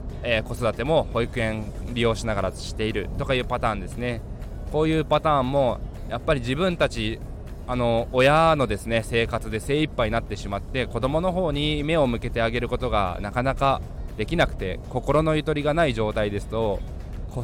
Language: Japanese